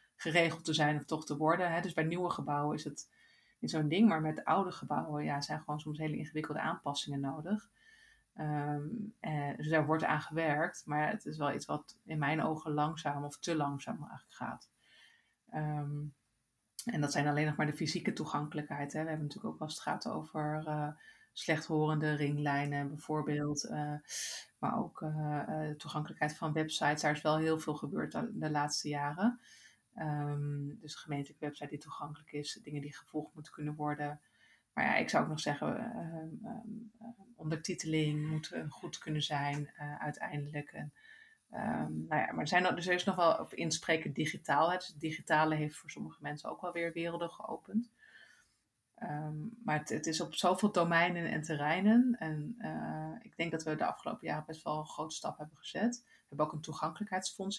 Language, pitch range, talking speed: Dutch, 150-170 Hz, 185 wpm